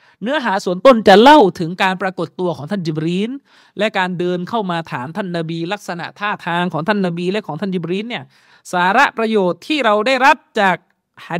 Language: Thai